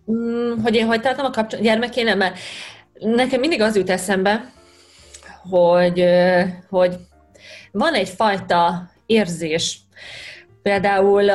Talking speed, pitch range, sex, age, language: 95 wpm, 180-220 Hz, female, 30-49, Hungarian